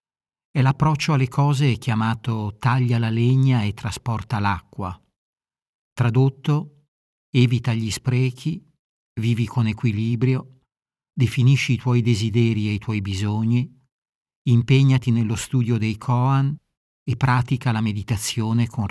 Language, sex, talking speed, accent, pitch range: Italian, male, 115 wpm, native, 105-130 Hz